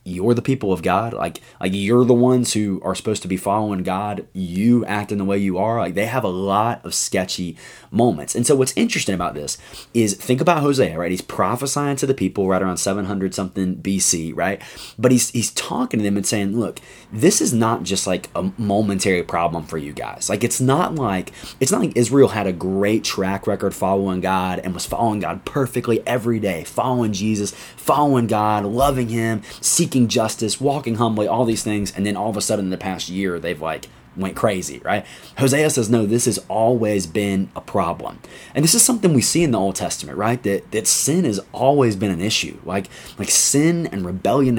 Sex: male